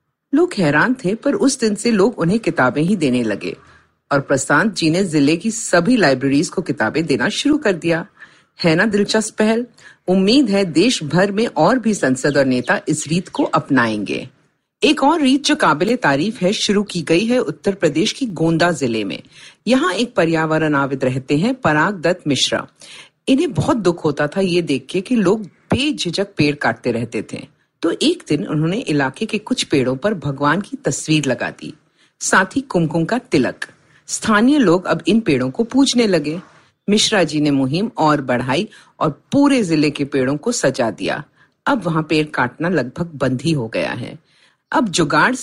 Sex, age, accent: female, 50-69, native